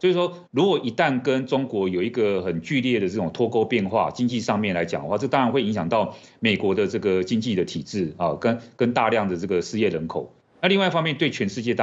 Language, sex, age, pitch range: Chinese, male, 30-49, 100-140 Hz